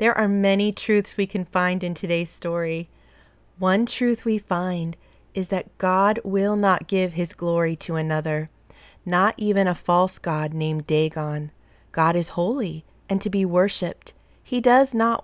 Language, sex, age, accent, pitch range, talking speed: English, female, 30-49, American, 175-225 Hz, 160 wpm